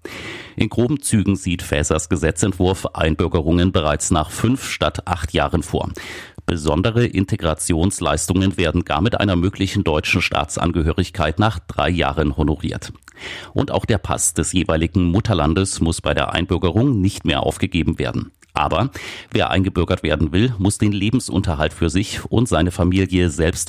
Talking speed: 140 wpm